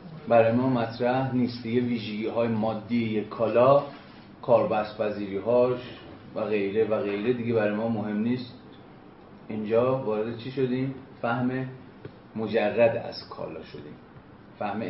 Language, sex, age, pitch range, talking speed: Persian, male, 30-49, 115-135 Hz, 115 wpm